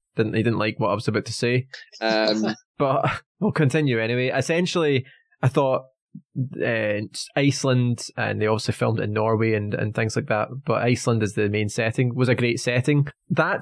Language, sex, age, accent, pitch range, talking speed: English, male, 20-39, British, 120-145 Hz, 180 wpm